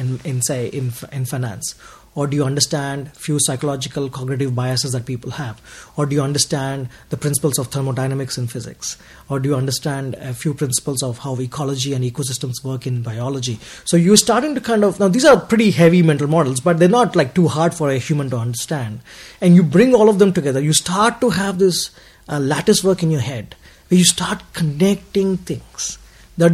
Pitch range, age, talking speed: 135-180 Hz, 30-49, 205 wpm